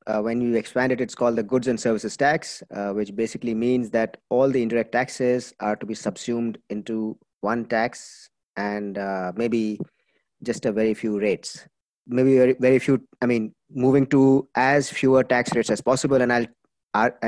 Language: English